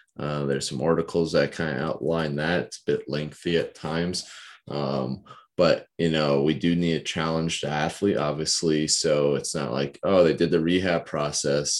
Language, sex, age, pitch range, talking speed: English, male, 20-39, 70-85 Hz, 190 wpm